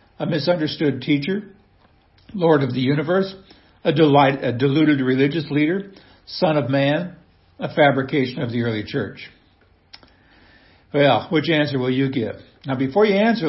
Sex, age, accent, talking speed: male, 60-79, American, 140 wpm